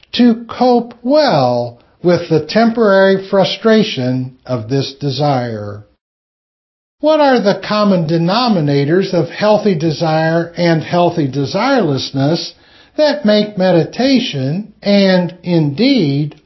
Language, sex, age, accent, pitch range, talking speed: English, male, 60-79, American, 150-225 Hz, 95 wpm